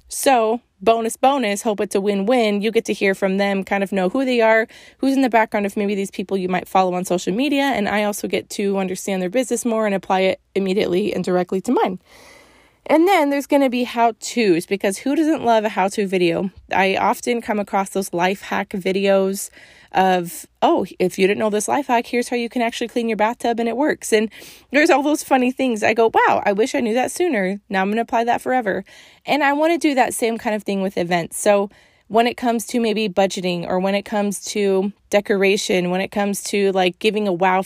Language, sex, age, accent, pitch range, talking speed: English, female, 20-39, American, 190-240 Hz, 235 wpm